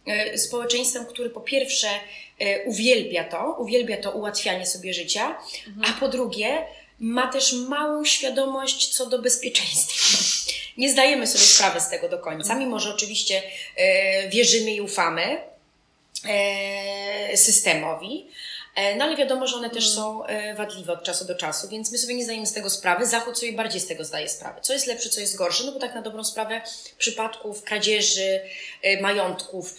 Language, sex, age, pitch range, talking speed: Polish, female, 20-39, 190-245 Hz, 155 wpm